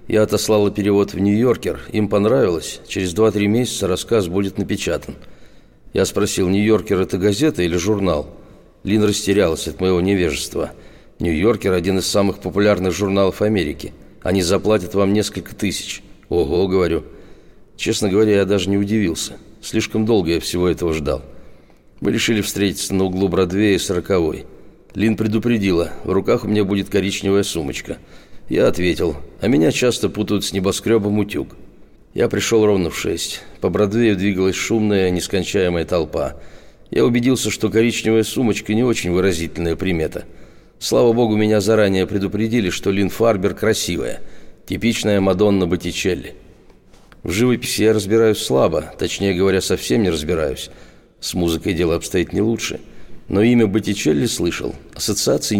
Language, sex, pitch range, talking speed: Russian, male, 95-110 Hz, 140 wpm